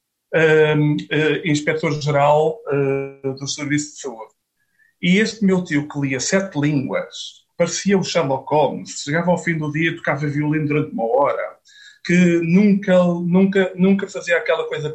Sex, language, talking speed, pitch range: male, Portuguese, 155 wpm, 145-190 Hz